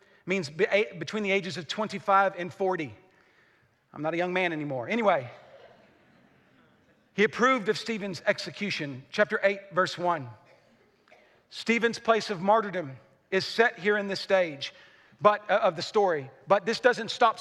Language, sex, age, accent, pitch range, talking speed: English, male, 40-59, American, 190-230 Hz, 150 wpm